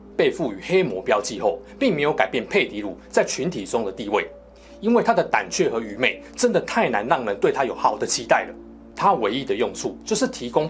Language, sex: Chinese, male